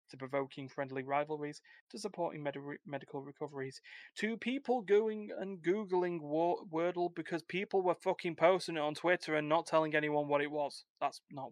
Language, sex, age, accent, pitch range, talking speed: English, male, 20-39, British, 140-170 Hz, 160 wpm